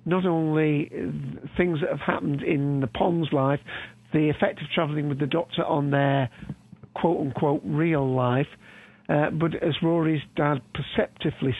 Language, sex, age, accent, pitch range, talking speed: English, male, 50-69, British, 135-170 Hz, 150 wpm